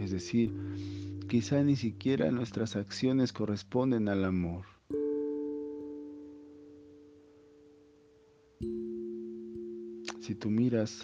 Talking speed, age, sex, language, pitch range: 70 wpm, 40-59, male, Spanish, 95-135 Hz